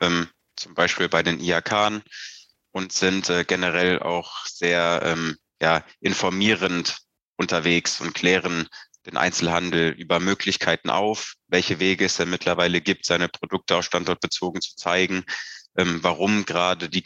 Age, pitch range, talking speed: 20-39, 85-95 Hz, 125 wpm